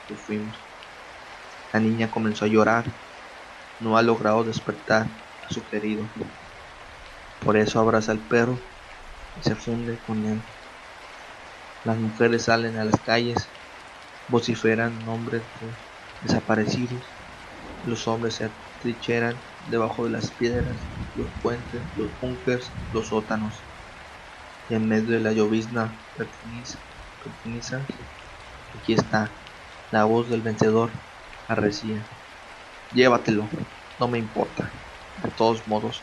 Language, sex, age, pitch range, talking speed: Spanish, male, 20-39, 110-115 Hz, 115 wpm